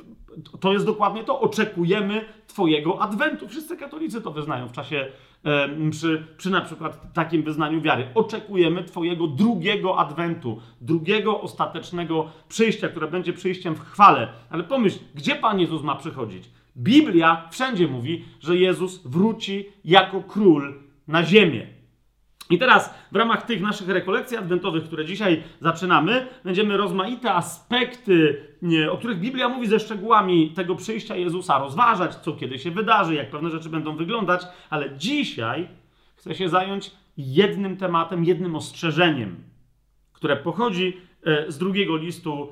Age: 40-59